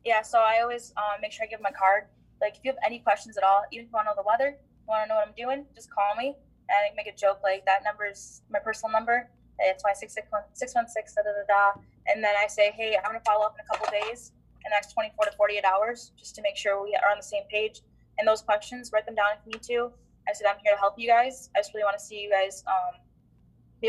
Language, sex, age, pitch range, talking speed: English, female, 10-29, 200-245 Hz, 300 wpm